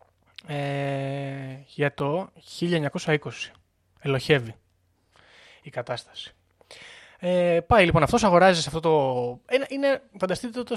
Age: 20-39